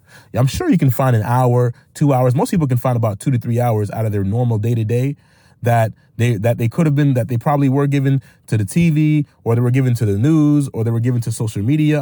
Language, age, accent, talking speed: English, 30-49, American, 260 wpm